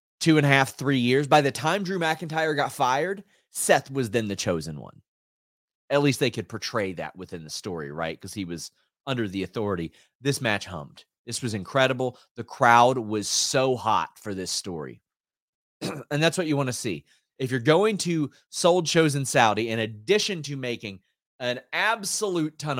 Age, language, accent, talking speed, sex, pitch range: 30-49, English, American, 185 wpm, male, 105-145 Hz